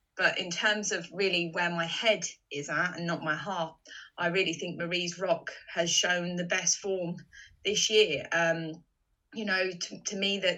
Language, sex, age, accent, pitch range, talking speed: English, female, 20-39, British, 170-210 Hz, 185 wpm